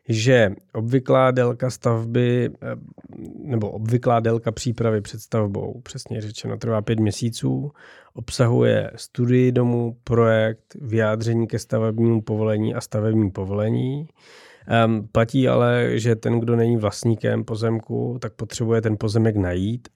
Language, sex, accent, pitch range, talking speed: Czech, male, native, 105-115 Hz, 110 wpm